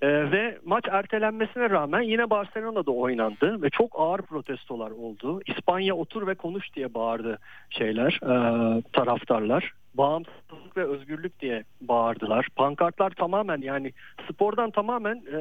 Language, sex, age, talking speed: Turkish, male, 50-69, 115 wpm